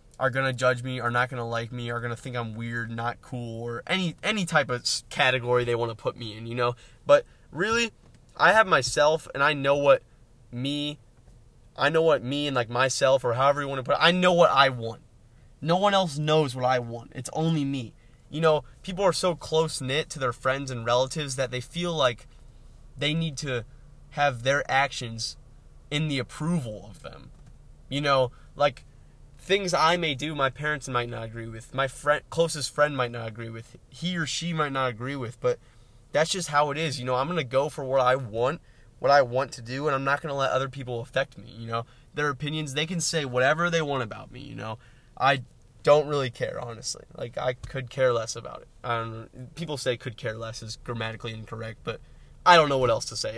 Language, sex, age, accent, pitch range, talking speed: English, male, 20-39, American, 120-150 Hz, 225 wpm